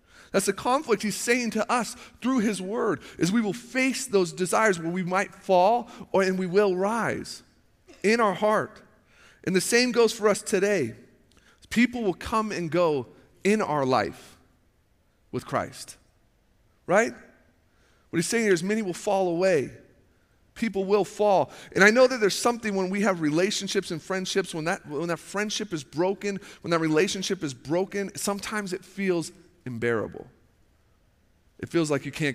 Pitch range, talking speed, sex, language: 155-200 Hz, 170 wpm, male, English